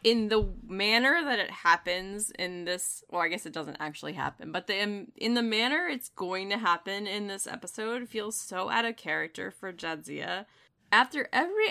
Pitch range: 175-240 Hz